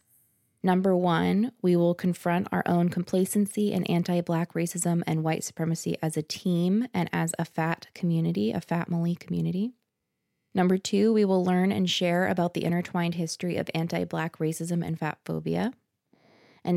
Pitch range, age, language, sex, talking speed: 165-190 Hz, 20-39, English, female, 160 wpm